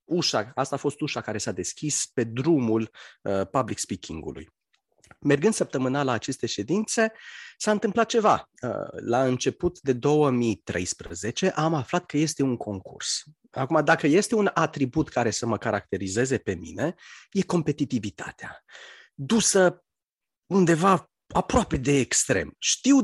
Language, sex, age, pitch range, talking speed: Romanian, male, 30-49, 115-160 Hz, 135 wpm